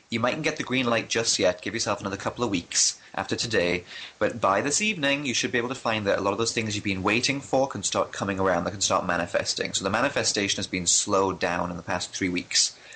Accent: British